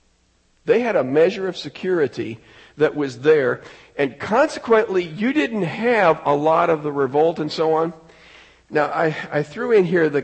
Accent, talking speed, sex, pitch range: American, 170 wpm, male, 150-215 Hz